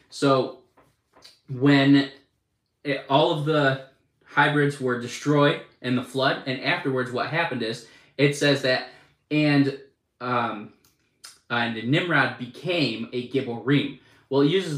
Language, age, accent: English, 20-39, American